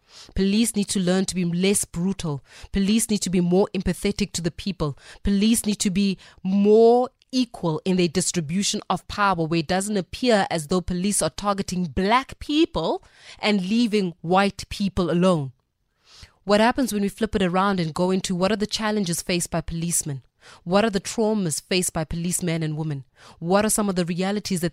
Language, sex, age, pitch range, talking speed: English, female, 20-39, 165-200 Hz, 185 wpm